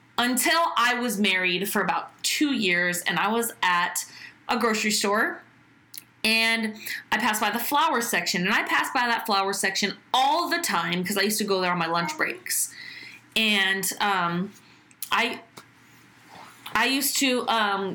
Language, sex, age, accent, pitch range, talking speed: English, female, 20-39, American, 195-260 Hz, 165 wpm